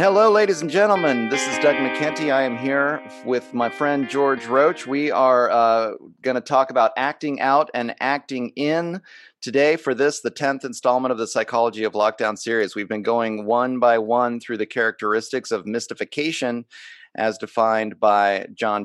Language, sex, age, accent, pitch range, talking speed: English, male, 30-49, American, 105-130 Hz, 175 wpm